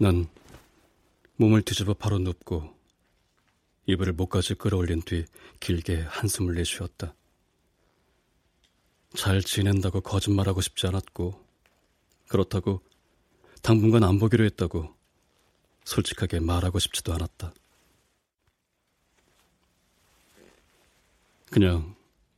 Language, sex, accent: Korean, male, native